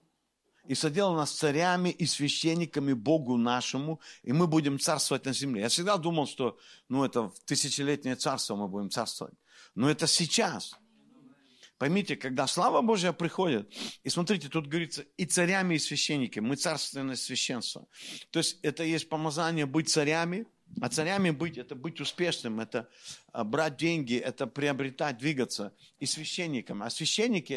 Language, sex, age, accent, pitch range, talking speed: Russian, male, 50-69, native, 140-180 Hz, 150 wpm